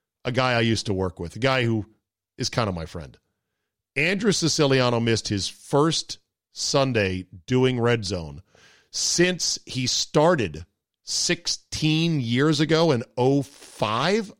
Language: English